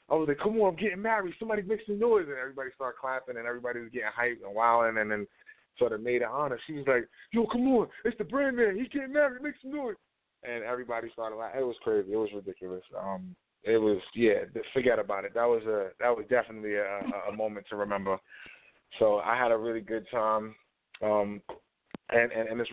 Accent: American